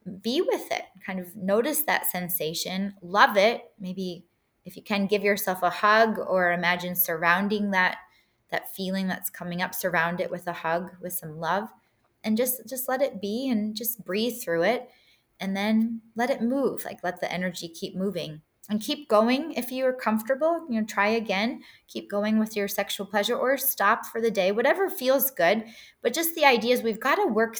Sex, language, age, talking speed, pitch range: female, English, 20-39, 195 wpm, 185-245 Hz